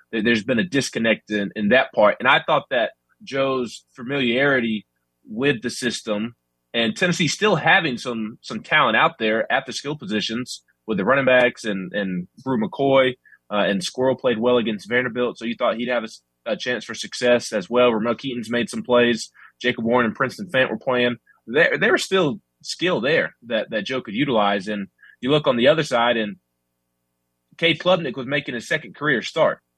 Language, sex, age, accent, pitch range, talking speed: English, male, 20-39, American, 105-130 Hz, 195 wpm